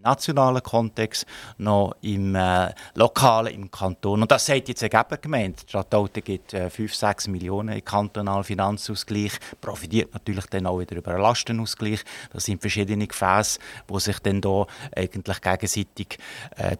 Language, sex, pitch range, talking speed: German, male, 100-120 Hz, 150 wpm